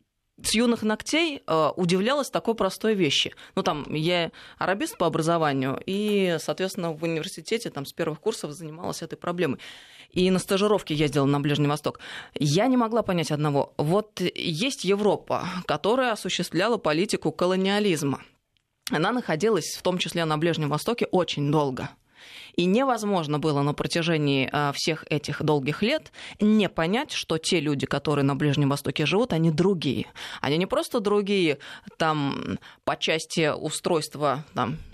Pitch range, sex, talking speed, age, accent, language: 150-205 Hz, female, 145 wpm, 20-39, native, Russian